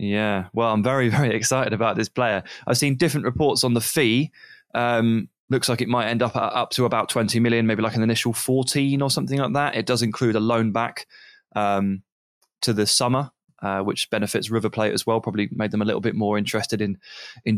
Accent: British